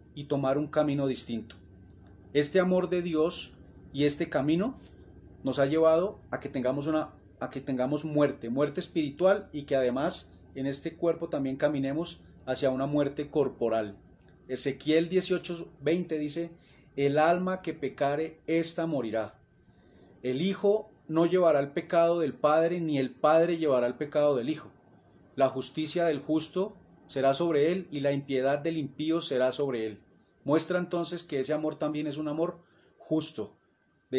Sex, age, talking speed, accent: male, 30-49, 155 wpm, Colombian